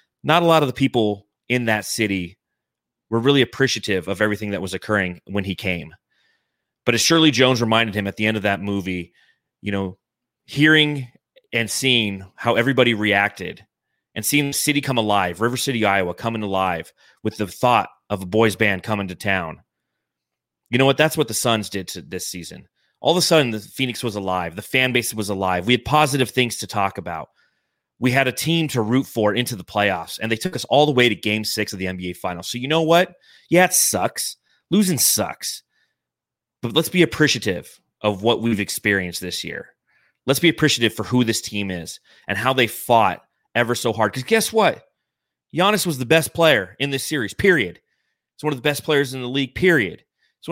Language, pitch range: English, 100-140 Hz